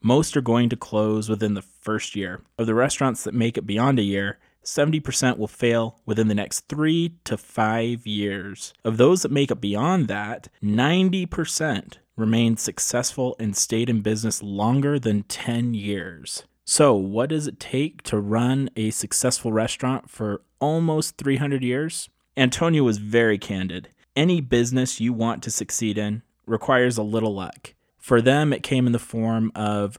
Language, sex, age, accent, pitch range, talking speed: English, male, 30-49, American, 110-130 Hz, 165 wpm